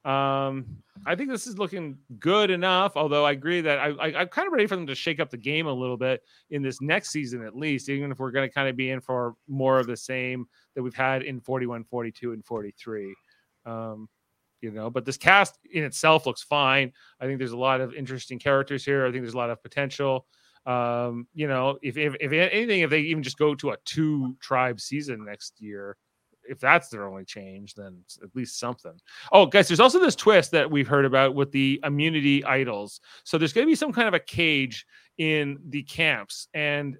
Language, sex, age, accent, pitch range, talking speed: English, male, 30-49, American, 125-150 Hz, 225 wpm